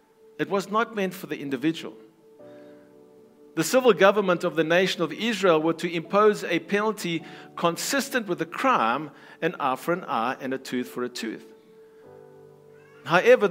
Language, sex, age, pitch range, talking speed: English, male, 50-69, 150-210 Hz, 160 wpm